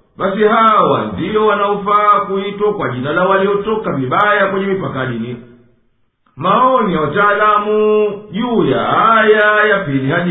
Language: Swahili